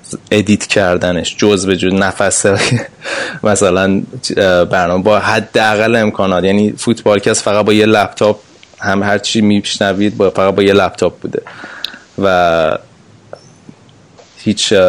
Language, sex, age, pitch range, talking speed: Persian, male, 20-39, 95-110 Hz, 110 wpm